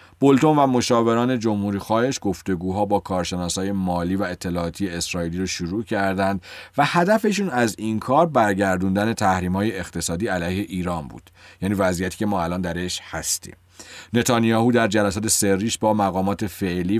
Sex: male